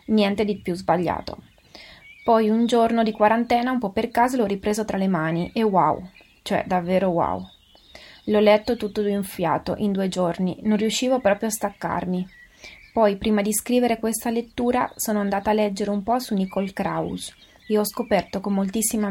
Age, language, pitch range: 20-39, Italian, 185-225 Hz